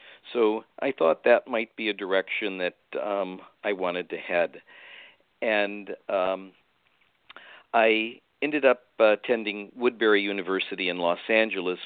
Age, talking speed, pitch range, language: 50-69, 125 wpm, 90-110 Hz, English